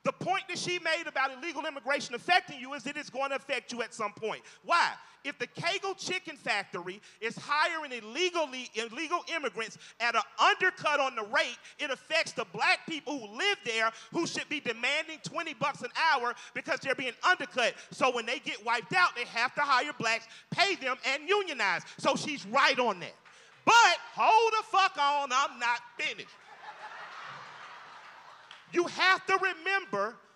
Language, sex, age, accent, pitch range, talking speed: English, male, 40-59, American, 240-350 Hz, 175 wpm